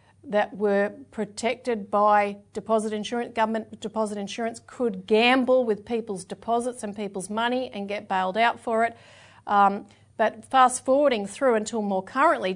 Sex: female